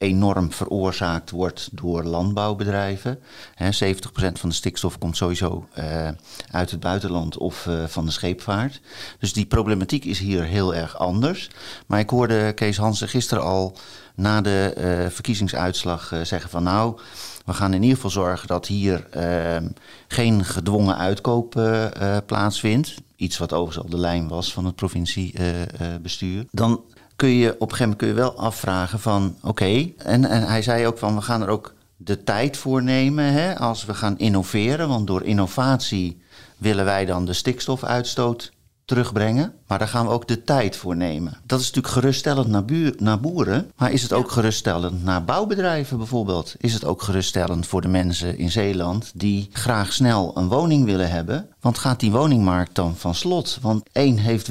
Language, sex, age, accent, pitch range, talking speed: Dutch, male, 40-59, Dutch, 90-120 Hz, 180 wpm